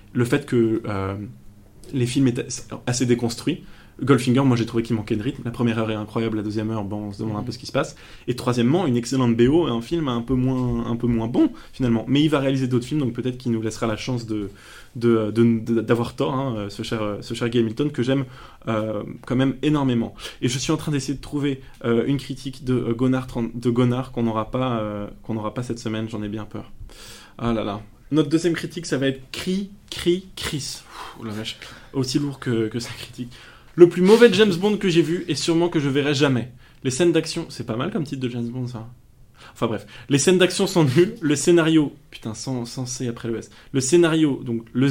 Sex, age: male, 20-39